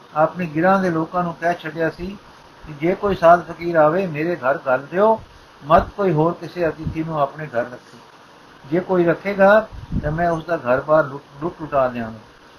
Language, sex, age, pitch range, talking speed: Punjabi, male, 60-79, 150-180 Hz, 180 wpm